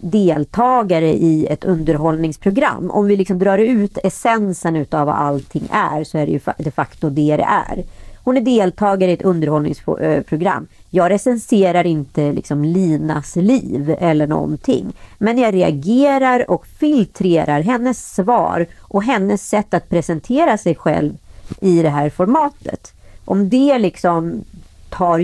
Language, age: Swedish, 40-59